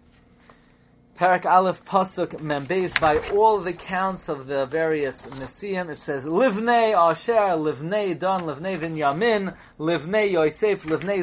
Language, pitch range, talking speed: English, 130-185 Hz, 125 wpm